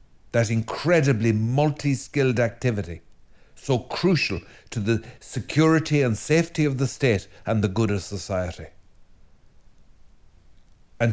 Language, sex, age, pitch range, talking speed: English, male, 60-79, 95-120 Hz, 110 wpm